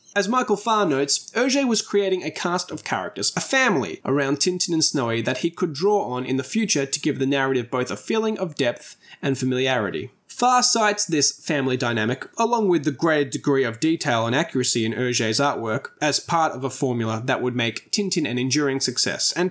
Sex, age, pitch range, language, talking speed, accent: male, 20-39, 130-200 Hz, English, 205 wpm, Australian